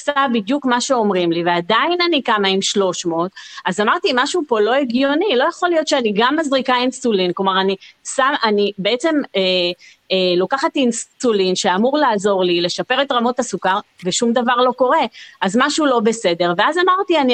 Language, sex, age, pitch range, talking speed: Hebrew, female, 30-49, 195-265 Hz, 170 wpm